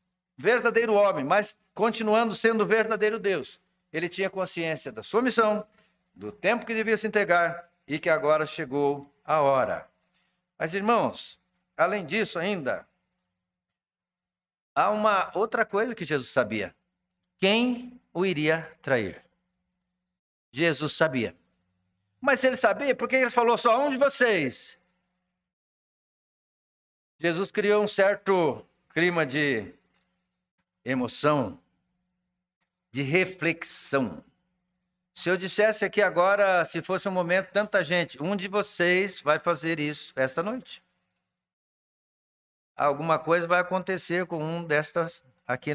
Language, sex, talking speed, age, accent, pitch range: Portuguese, male, 120 wpm, 60-79, Brazilian, 155-210 Hz